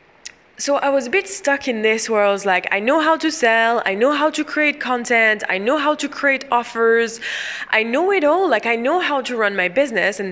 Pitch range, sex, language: 210-285 Hz, female, English